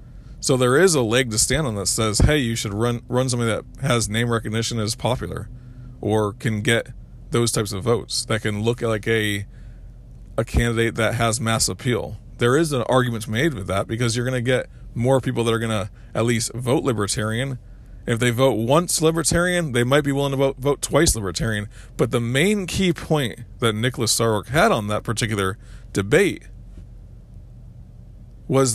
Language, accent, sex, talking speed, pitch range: English, American, male, 190 wpm, 110-135 Hz